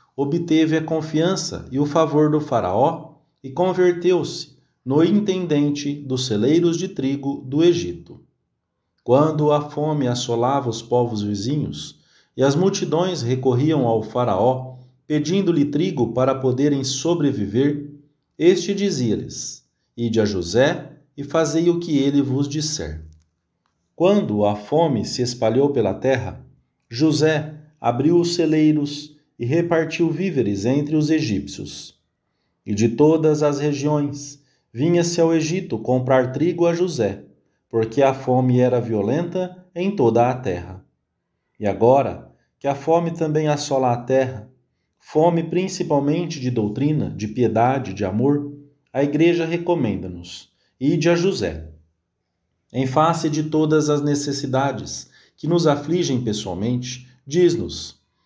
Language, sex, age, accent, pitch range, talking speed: English, male, 40-59, Brazilian, 120-160 Hz, 125 wpm